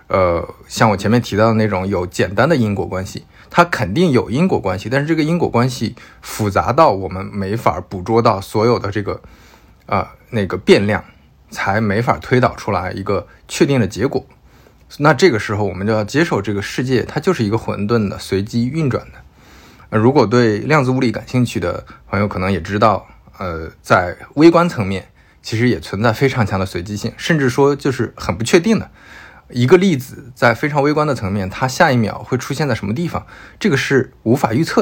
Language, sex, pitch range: Chinese, male, 100-135 Hz